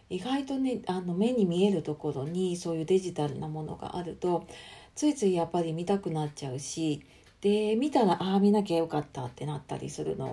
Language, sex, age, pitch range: Japanese, female, 40-59, 155-195 Hz